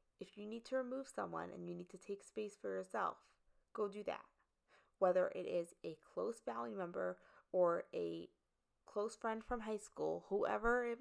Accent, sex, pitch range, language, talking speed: American, female, 170-210 Hz, English, 180 wpm